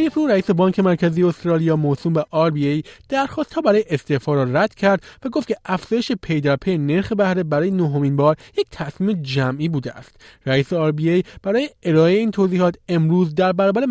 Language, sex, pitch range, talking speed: Persian, male, 155-200 Hz, 175 wpm